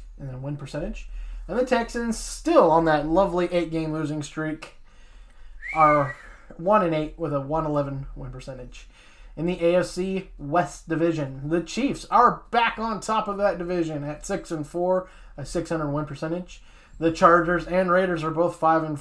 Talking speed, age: 165 wpm, 20-39